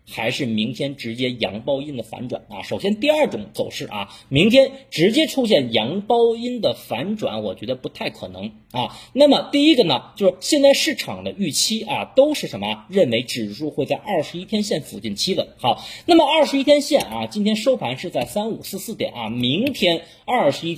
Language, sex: Chinese, male